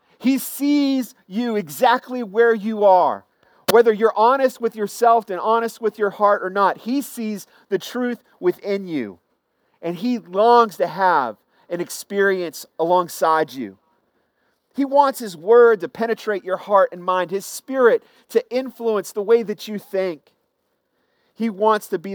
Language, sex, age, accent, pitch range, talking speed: English, male, 40-59, American, 175-230 Hz, 155 wpm